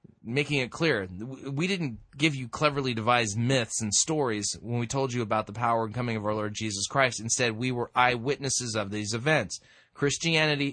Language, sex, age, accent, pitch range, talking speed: English, male, 30-49, American, 115-145 Hz, 190 wpm